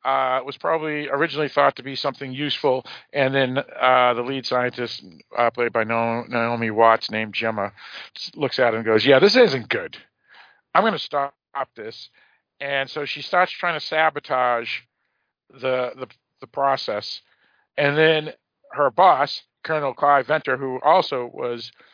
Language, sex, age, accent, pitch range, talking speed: English, male, 50-69, American, 115-140 Hz, 160 wpm